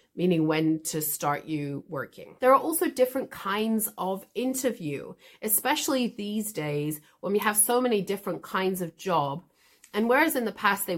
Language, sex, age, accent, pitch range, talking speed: English, female, 30-49, British, 160-215 Hz, 170 wpm